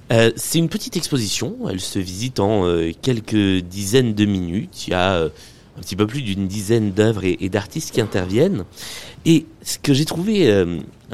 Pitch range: 100-130 Hz